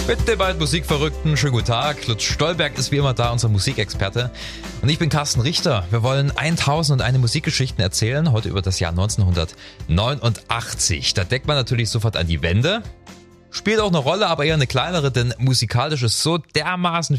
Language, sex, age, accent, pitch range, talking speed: German, male, 30-49, German, 100-140 Hz, 175 wpm